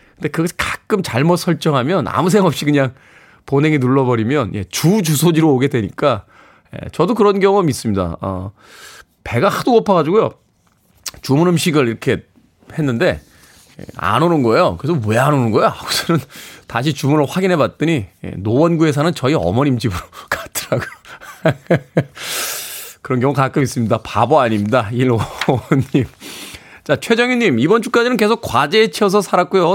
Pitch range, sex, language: 120-175 Hz, male, Korean